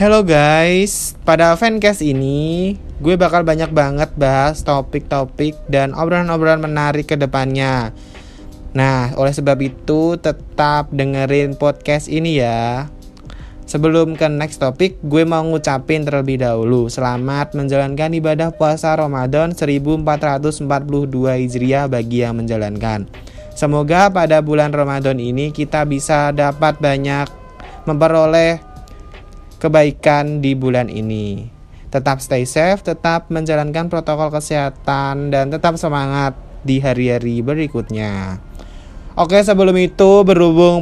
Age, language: 20-39, Indonesian